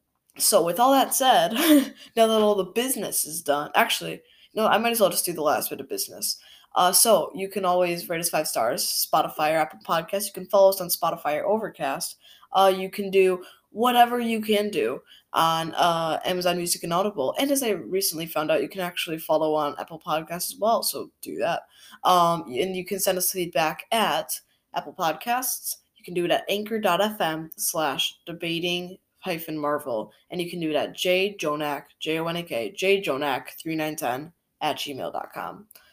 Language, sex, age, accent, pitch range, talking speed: English, female, 10-29, American, 160-200 Hz, 180 wpm